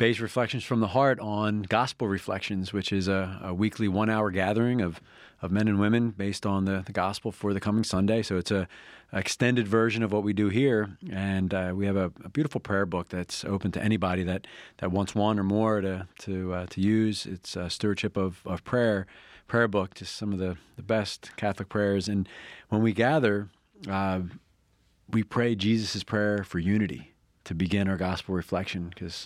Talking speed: 200 wpm